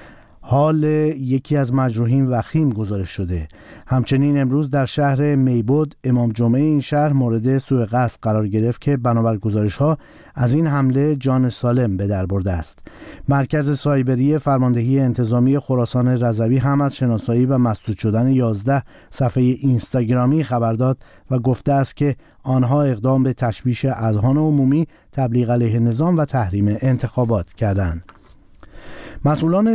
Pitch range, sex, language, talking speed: 120-145 Hz, male, Persian, 135 wpm